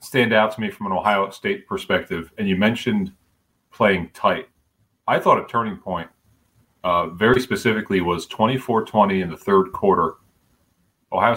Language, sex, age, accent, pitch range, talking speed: English, male, 30-49, American, 95-120 Hz, 160 wpm